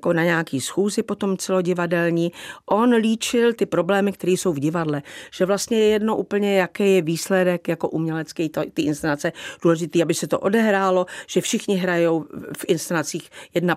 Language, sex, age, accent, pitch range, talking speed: Czech, female, 50-69, native, 150-195 Hz, 170 wpm